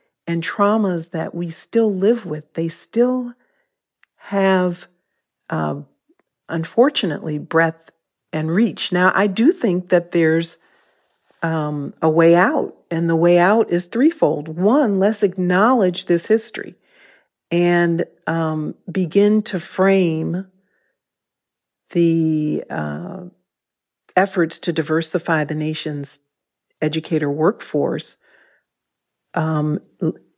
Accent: American